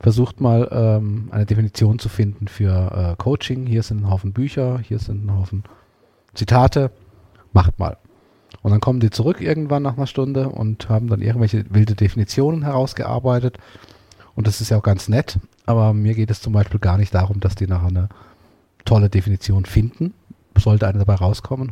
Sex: male